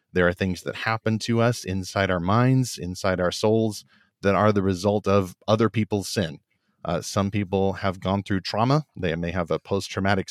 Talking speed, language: 190 wpm, English